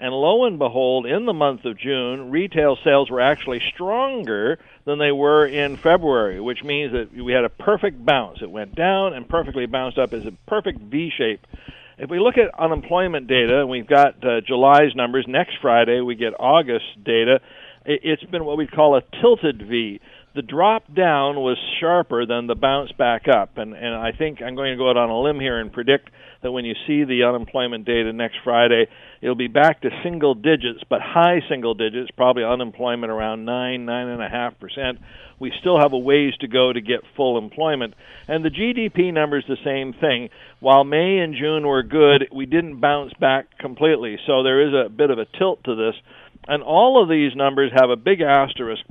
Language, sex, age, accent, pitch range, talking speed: English, male, 60-79, American, 120-155 Hz, 200 wpm